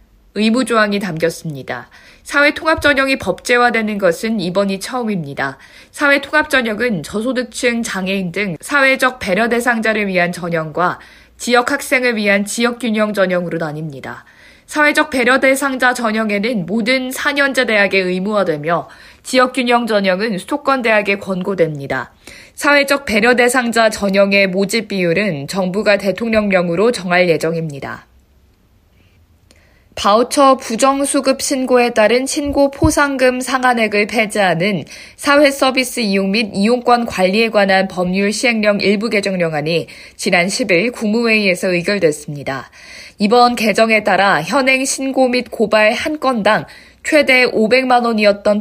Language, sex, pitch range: Korean, female, 185-255 Hz